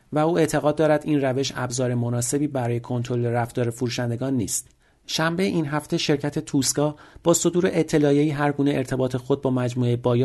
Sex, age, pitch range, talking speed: male, 40-59, 120-155 Hz, 160 wpm